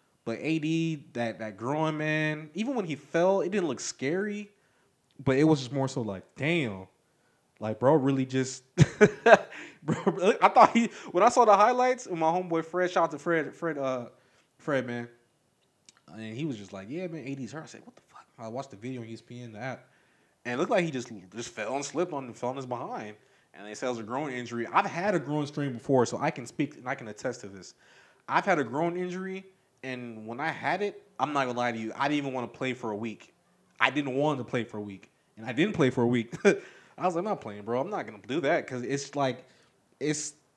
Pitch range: 120-160 Hz